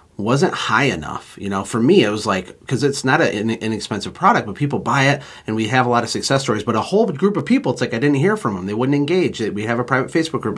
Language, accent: English, American